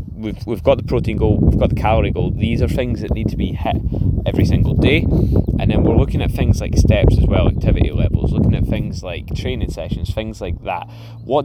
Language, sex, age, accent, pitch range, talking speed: English, male, 20-39, British, 90-110 Hz, 230 wpm